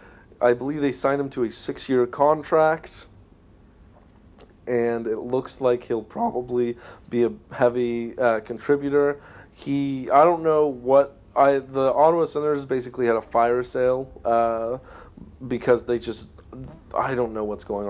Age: 30-49